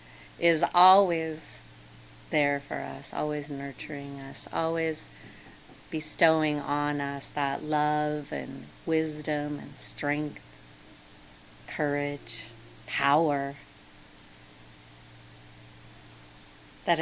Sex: female